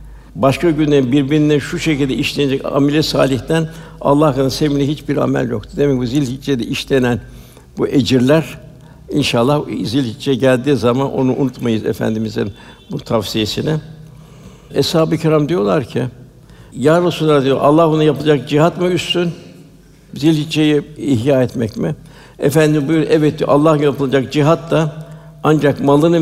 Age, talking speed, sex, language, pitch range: 60-79, 125 wpm, male, Turkish, 125-155 Hz